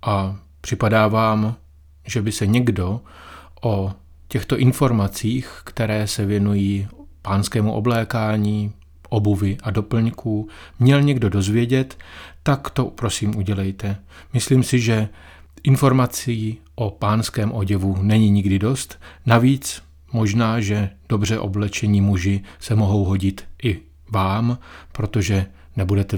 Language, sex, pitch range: Czech, male, 95-120 Hz